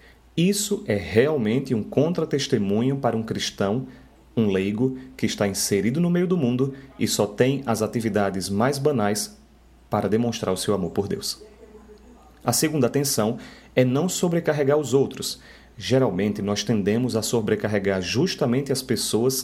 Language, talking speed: Portuguese, 145 wpm